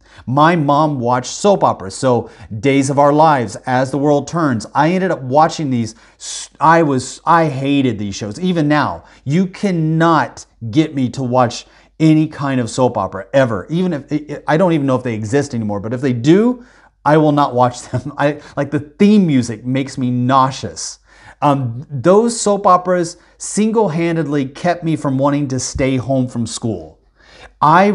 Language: English